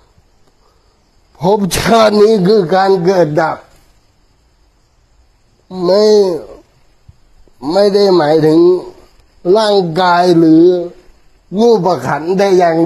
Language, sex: Thai, male